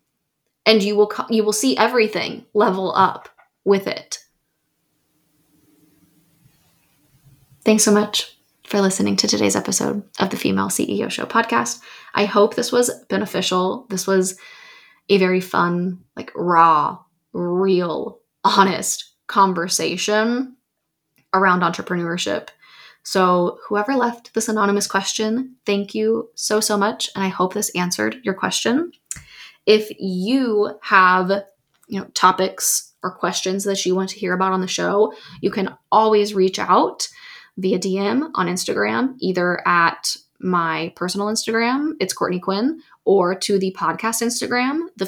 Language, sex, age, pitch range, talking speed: English, female, 20-39, 180-220 Hz, 130 wpm